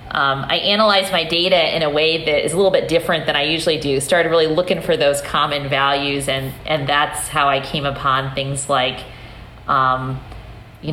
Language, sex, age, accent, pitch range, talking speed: English, female, 40-59, American, 140-170 Hz, 200 wpm